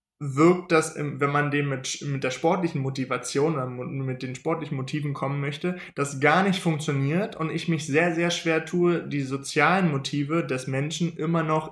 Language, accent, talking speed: German, German, 180 wpm